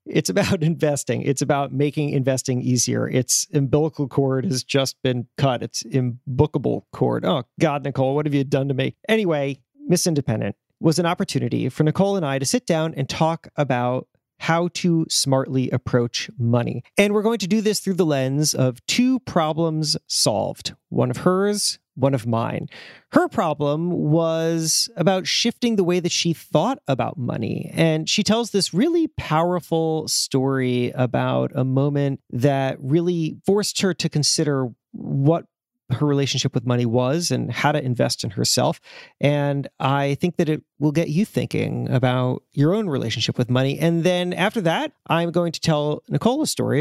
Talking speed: 170 wpm